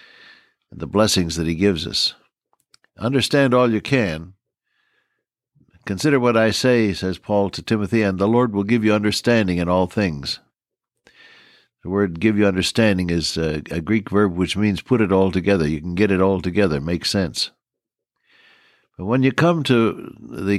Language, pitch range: English, 90-115 Hz